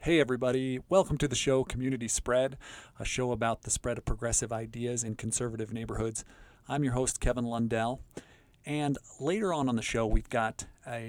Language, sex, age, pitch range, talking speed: English, male, 40-59, 115-135 Hz, 180 wpm